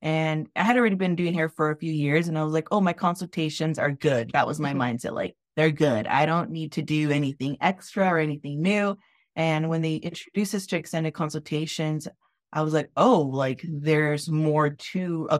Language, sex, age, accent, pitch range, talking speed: English, female, 20-39, American, 145-165 Hz, 210 wpm